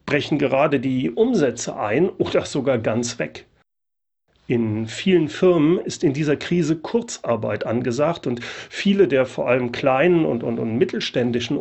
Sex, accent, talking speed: male, German, 145 wpm